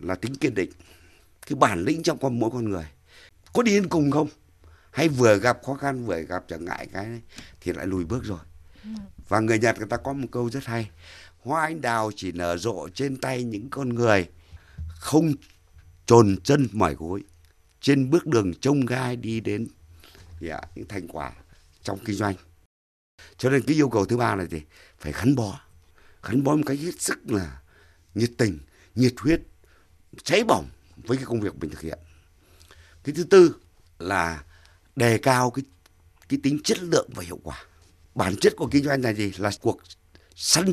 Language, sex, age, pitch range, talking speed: Vietnamese, male, 60-79, 85-130 Hz, 185 wpm